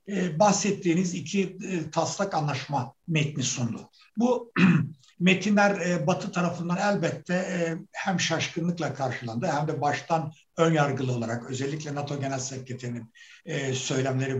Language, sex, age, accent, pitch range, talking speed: Turkish, male, 60-79, native, 135-175 Hz, 105 wpm